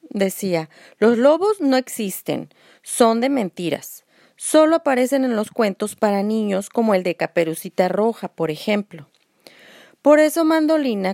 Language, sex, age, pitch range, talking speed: Spanish, female, 30-49, 185-250 Hz, 135 wpm